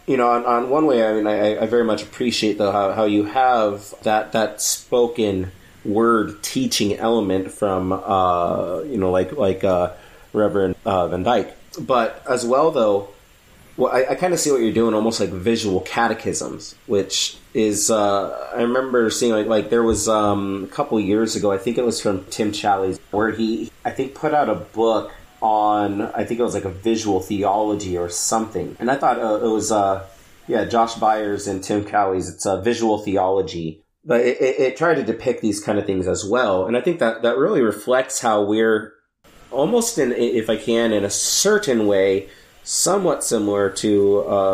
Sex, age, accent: male, 30-49, American